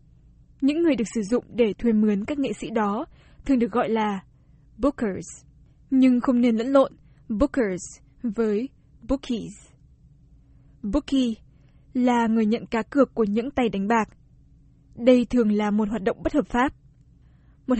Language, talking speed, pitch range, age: Vietnamese, 155 wpm, 210-255 Hz, 10-29